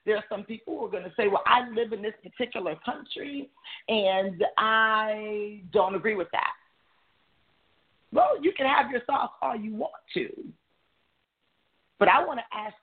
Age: 40-59